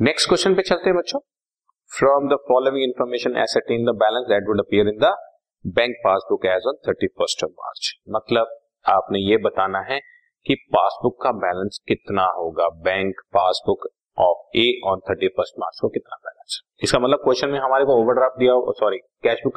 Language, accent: Hindi, native